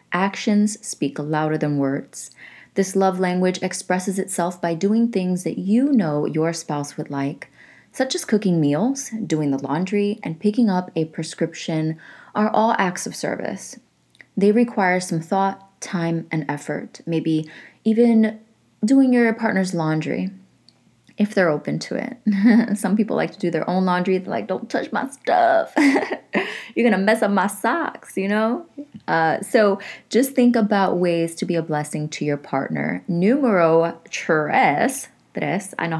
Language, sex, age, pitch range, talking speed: English, female, 20-39, 165-230 Hz, 160 wpm